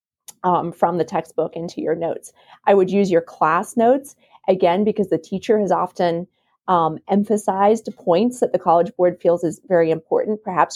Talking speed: 175 wpm